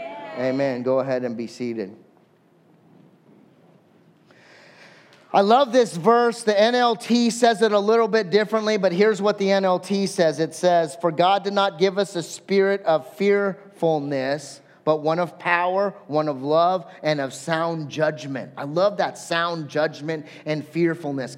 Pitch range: 165-225 Hz